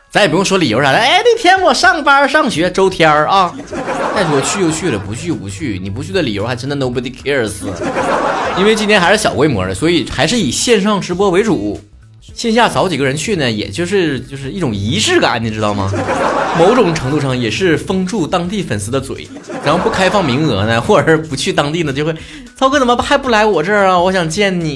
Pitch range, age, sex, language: 120-200 Hz, 20-39, male, Chinese